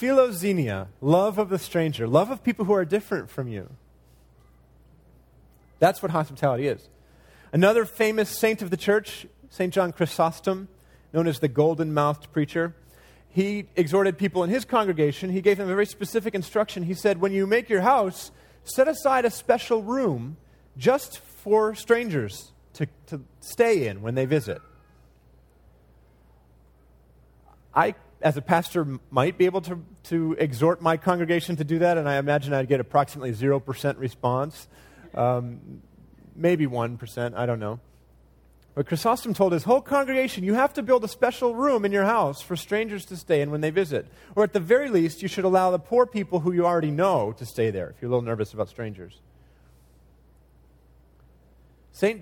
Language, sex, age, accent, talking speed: English, male, 30-49, American, 165 wpm